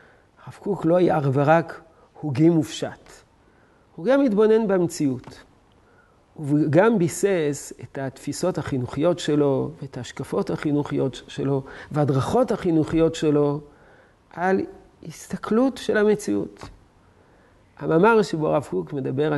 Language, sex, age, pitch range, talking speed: Hebrew, male, 50-69, 140-190 Hz, 110 wpm